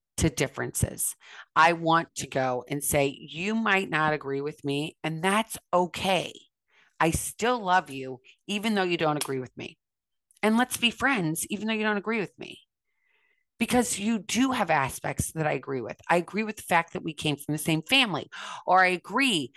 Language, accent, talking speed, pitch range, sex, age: English, American, 195 wpm, 155-215 Hz, female, 30-49